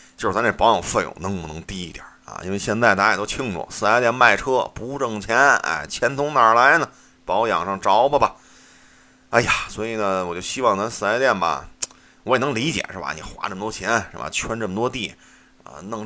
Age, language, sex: 30-49, Chinese, male